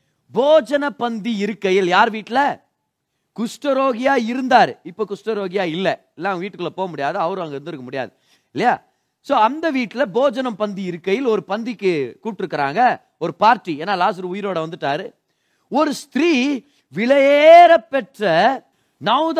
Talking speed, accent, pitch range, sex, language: 110 wpm, native, 190-265 Hz, male, Tamil